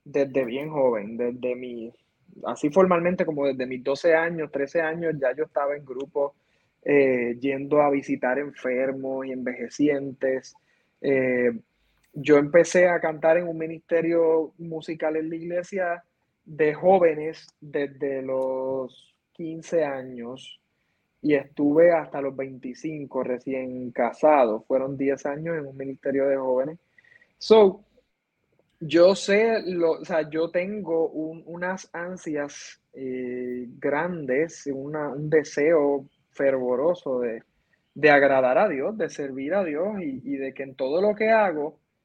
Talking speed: 135 wpm